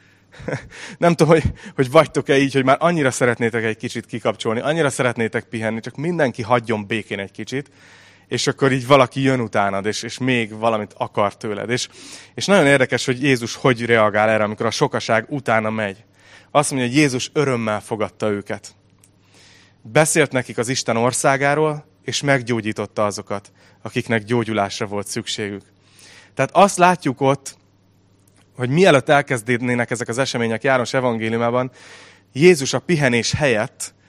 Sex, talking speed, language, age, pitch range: male, 145 wpm, Hungarian, 30-49, 105-140 Hz